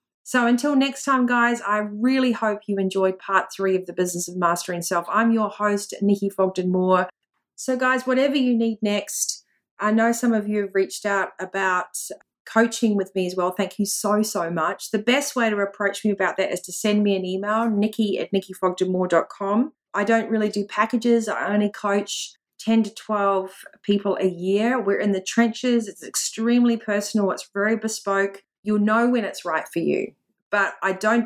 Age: 30-49